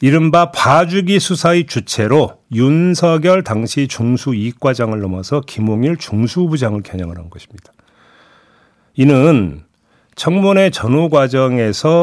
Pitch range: 115-180 Hz